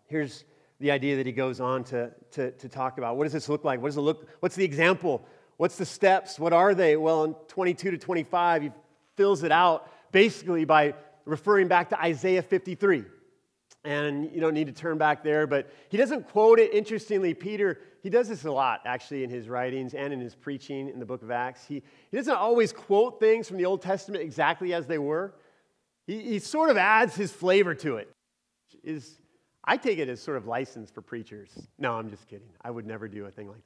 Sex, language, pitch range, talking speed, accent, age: male, English, 145-195 Hz, 220 wpm, American, 40-59